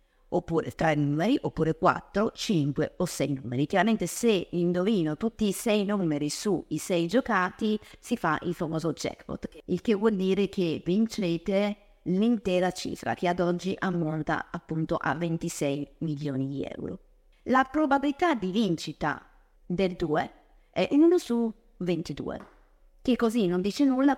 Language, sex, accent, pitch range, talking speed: Italian, female, native, 160-215 Hz, 140 wpm